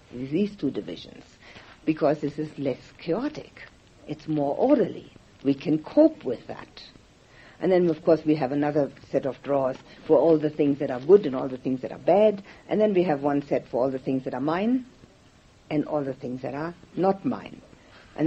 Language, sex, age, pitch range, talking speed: English, female, 60-79, 135-170 Hz, 205 wpm